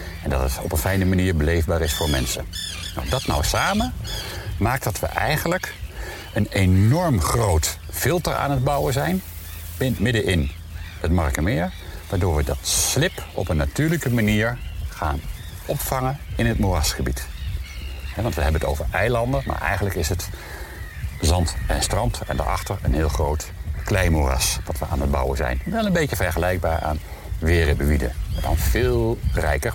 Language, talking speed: Dutch, 155 wpm